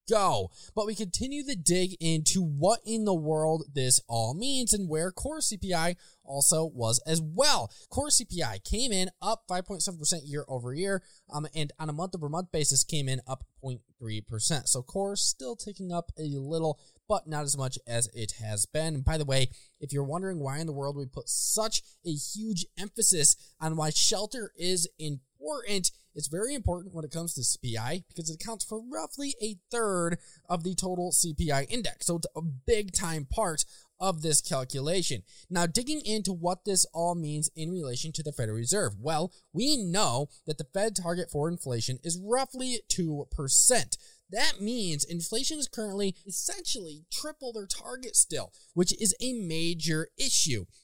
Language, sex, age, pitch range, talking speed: English, male, 20-39, 150-200 Hz, 175 wpm